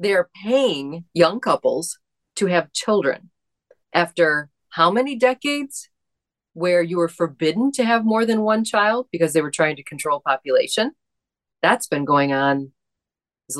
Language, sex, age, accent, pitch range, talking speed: English, female, 30-49, American, 160-215 Hz, 145 wpm